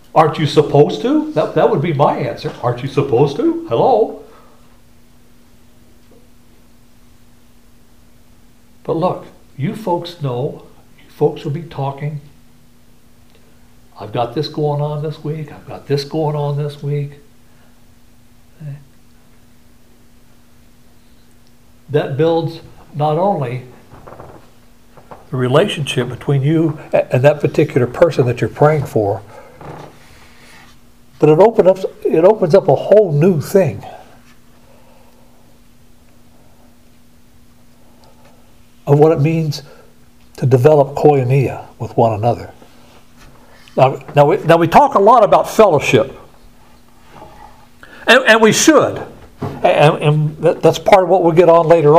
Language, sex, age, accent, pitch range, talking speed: English, male, 60-79, American, 125-160 Hz, 115 wpm